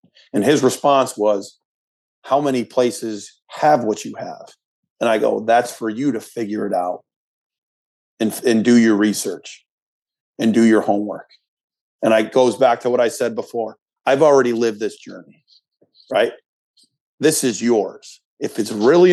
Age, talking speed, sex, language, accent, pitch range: 40-59, 160 wpm, male, English, American, 115-155 Hz